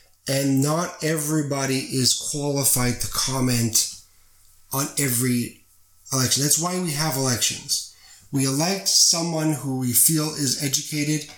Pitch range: 125-150 Hz